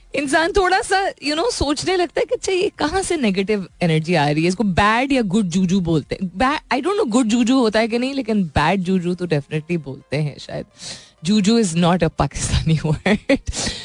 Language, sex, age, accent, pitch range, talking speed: Hindi, female, 20-39, native, 165-235 Hz, 145 wpm